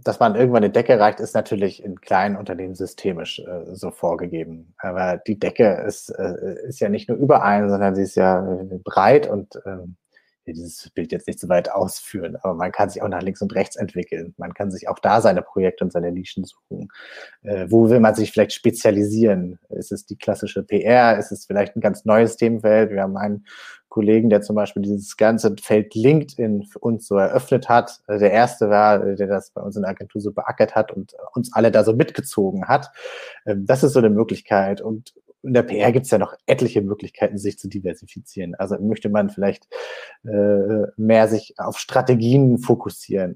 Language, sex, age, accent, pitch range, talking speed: German, male, 30-49, German, 100-115 Hz, 195 wpm